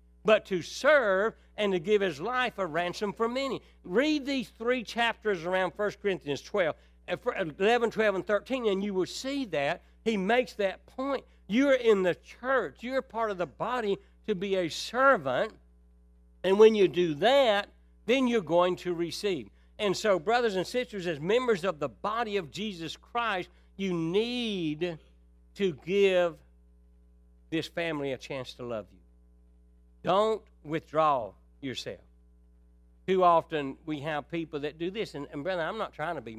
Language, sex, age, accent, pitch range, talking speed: English, male, 60-79, American, 135-195 Hz, 165 wpm